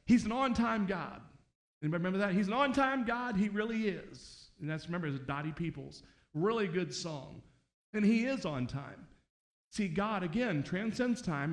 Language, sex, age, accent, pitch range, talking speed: English, male, 40-59, American, 150-200 Hz, 175 wpm